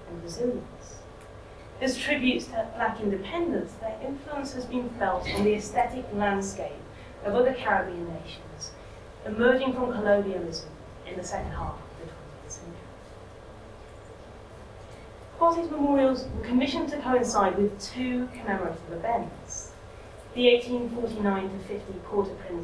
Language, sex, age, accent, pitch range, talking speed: English, female, 30-49, British, 200-270 Hz, 115 wpm